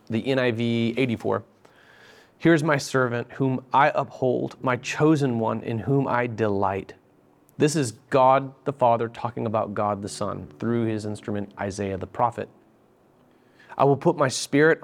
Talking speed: 150 wpm